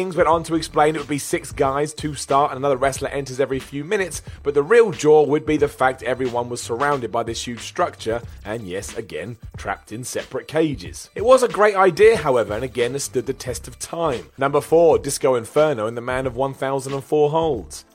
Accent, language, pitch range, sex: British, English, 125-165 Hz, male